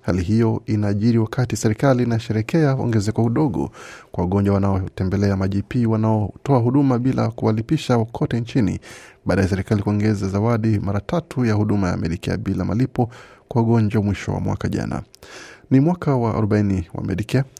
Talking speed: 150 wpm